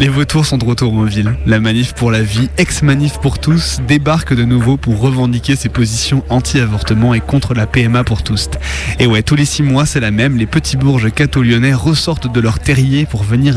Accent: French